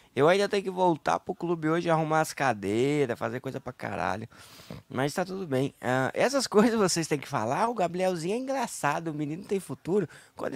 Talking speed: 195 wpm